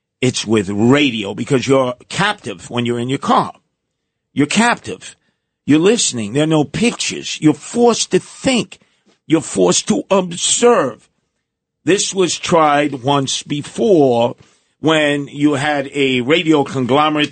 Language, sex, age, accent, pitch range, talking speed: English, male, 50-69, American, 110-145 Hz, 130 wpm